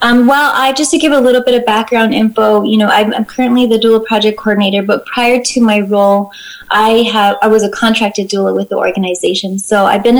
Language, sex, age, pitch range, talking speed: English, female, 20-39, 205-230 Hz, 230 wpm